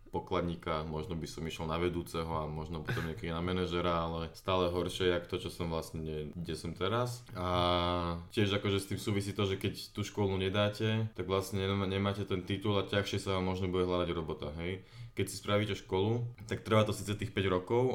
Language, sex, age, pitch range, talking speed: Slovak, male, 20-39, 90-100 Hz, 205 wpm